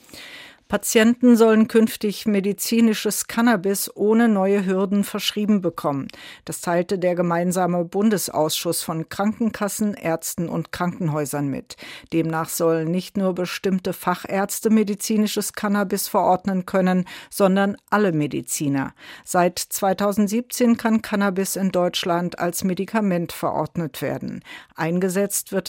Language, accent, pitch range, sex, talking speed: German, German, 170-210 Hz, female, 105 wpm